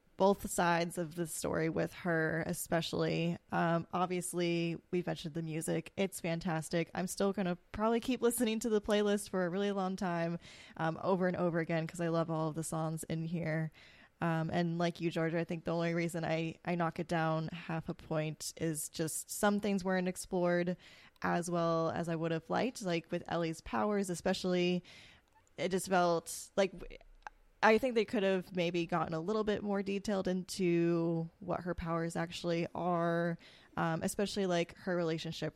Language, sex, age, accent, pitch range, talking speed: English, female, 10-29, American, 160-185 Hz, 180 wpm